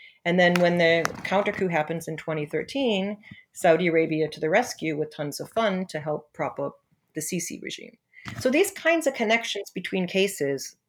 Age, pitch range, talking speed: 40-59, 155-200 Hz, 175 wpm